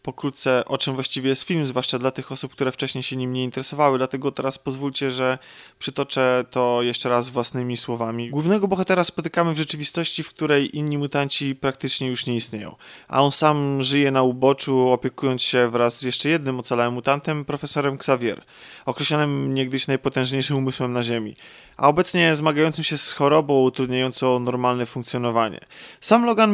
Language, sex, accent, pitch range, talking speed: Polish, male, native, 130-155 Hz, 165 wpm